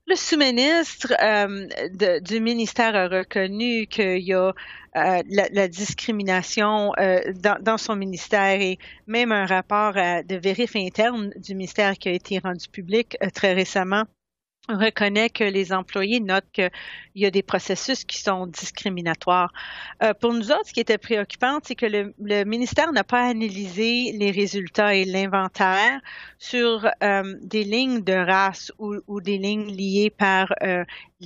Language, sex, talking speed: French, female, 160 wpm